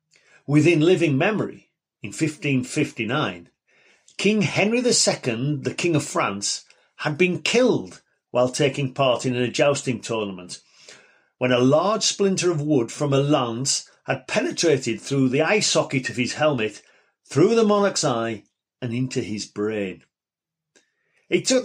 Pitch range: 125-180 Hz